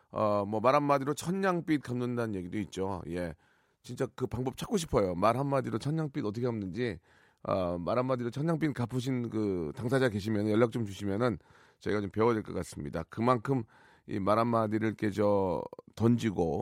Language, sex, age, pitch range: Korean, male, 40-59, 110-155 Hz